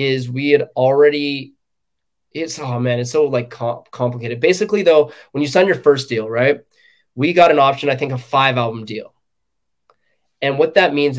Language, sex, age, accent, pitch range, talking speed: English, male, 20-39, American, 120-150 Hz, 180 wpm